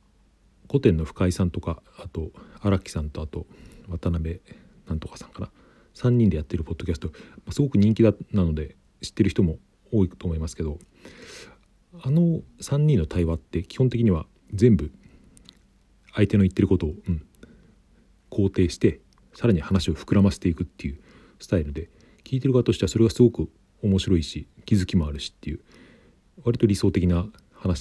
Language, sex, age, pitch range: Japanese, male, 40-59, 80-105 Hz